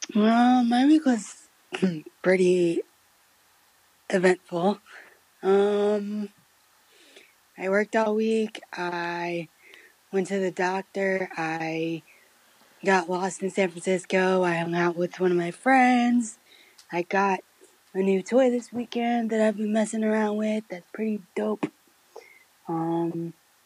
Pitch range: 175-220 Hz